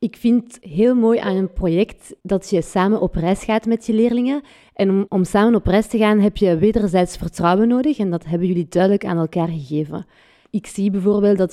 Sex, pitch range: female, 175-220 Hz